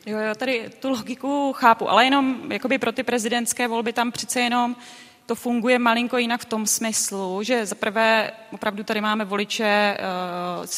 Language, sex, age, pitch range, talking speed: Czech, female, 20-39, 200-230 Hz, 165 wpm